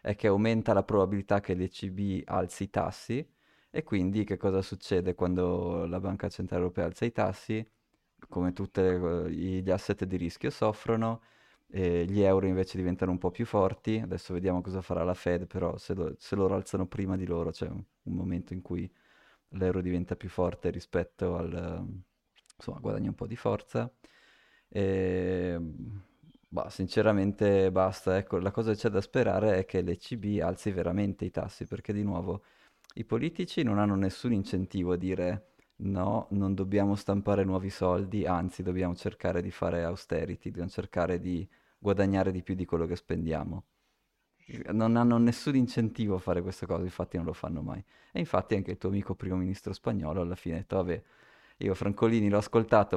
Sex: male